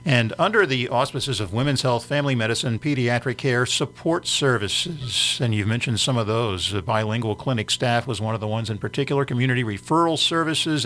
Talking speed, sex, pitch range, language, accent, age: 180 wpm, male, 110-140 Hz, English, American, 50-69